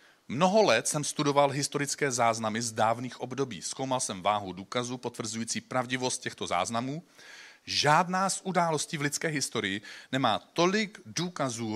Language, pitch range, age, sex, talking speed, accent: Czech, 110-145 Hz, 40-59, male, 135 wpm, native